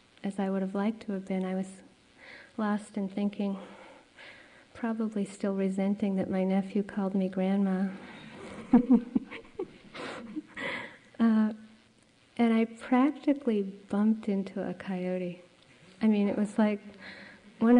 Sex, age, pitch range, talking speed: female, 40-59, 200-255 Hz, 120 wpm